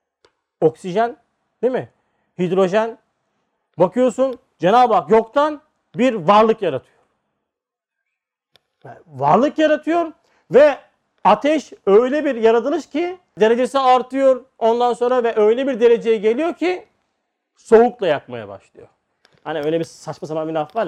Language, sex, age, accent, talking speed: Turkish, male, 40-59, native, 120 wpm